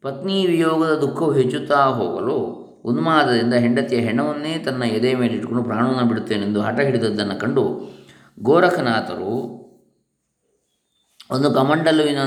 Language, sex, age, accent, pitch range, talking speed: Kannada, male, 20-39, native, 115-145 Hz, 100 wpm